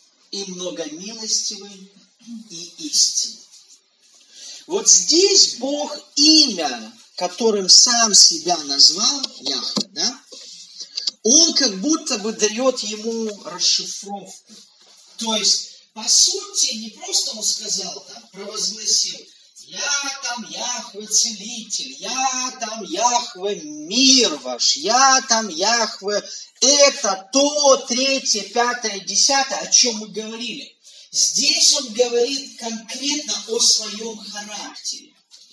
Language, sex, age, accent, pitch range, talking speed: Russian, male, 40-59, native, 205-260 Hz, 100 wpm